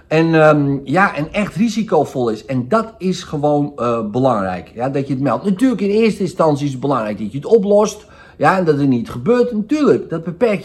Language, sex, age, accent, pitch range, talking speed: Dutch, male, 50-69, Dutch, 115-185 Hz, 215 wpm